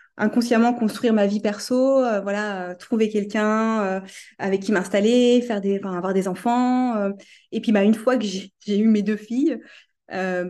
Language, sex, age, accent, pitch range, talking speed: French, female, 20-39, French, 190-230 Hz, 195 wpm